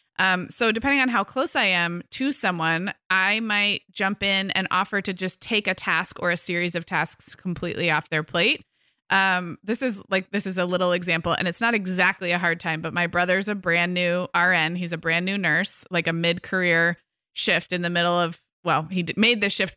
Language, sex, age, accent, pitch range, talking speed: English, female, 20-39, American, 170-205 Hz, 220 wpm